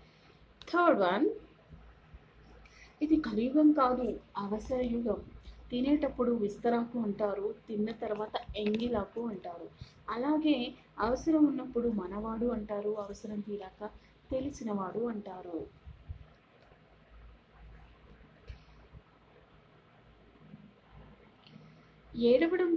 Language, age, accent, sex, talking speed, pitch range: Telugu, 30-49, native, female, 55 wpm, 210-265 Hz